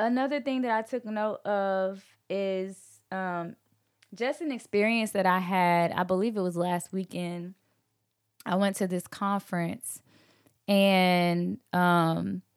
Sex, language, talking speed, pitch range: female, English, 135 wpm, 170-200 Hz